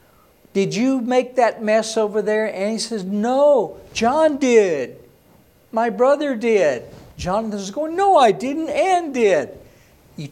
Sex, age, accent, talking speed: male, 60-79, American, 145 wpm